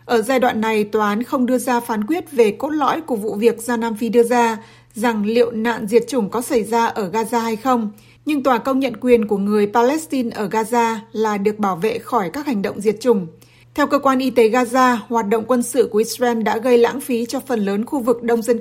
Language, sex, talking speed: Vietnamese, female, 250 wpm